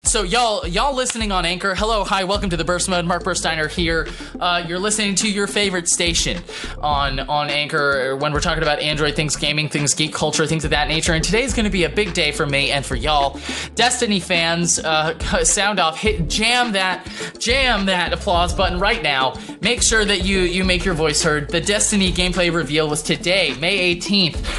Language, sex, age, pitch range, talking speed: English, male, 20-39, 160-200 Hz, 205 wpm